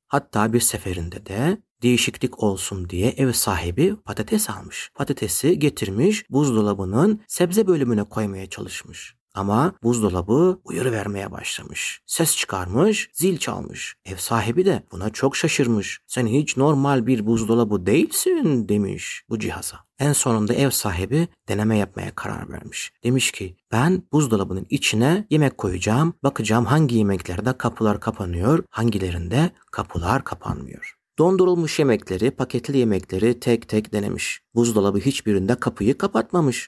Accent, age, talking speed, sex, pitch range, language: native, 60-79, 125 wpm, male, 105-140 Hz, Turkish